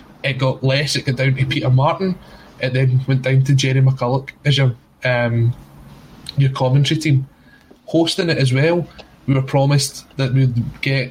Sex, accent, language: male, British, English